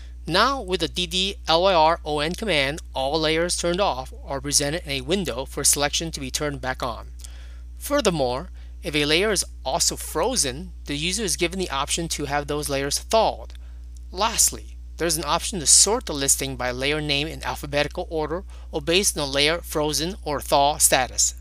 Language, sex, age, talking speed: English, male, 30-49, 175 wpm